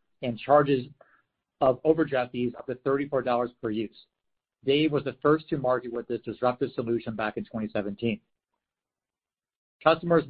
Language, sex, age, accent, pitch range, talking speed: English, male, 50-69, American, 120-135 Hz, 140 wpm